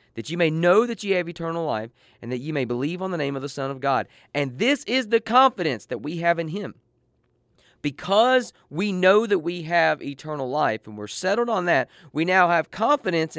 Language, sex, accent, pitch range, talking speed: English, male, American, 120-170 Hz, 220 wpm